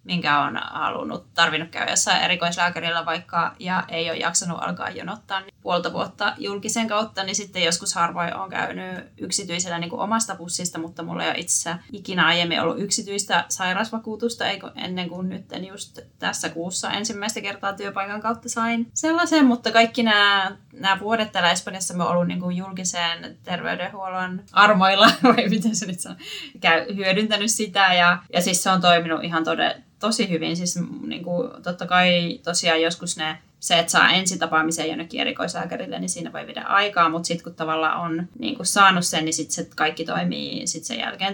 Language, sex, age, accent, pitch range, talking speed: Finnish, female, 20-39, native, 170-205 Hz, 165 wpm